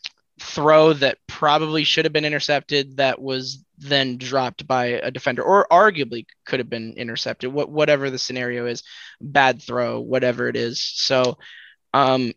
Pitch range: 130-150 Hz